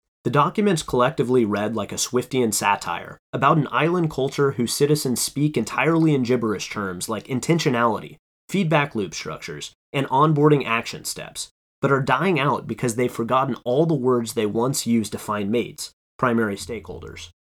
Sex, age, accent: male, 30-49, American